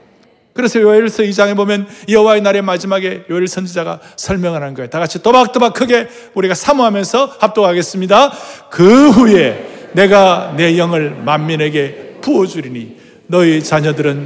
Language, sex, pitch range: Korean, male, 160-225 Hz